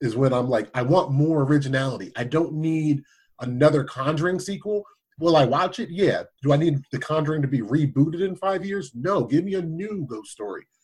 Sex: male